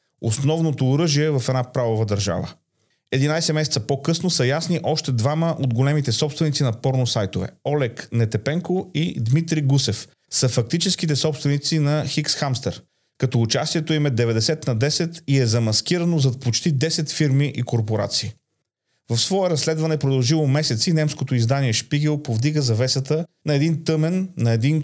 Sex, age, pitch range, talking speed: male, 40-59, 120-155 Hz, 145 wpm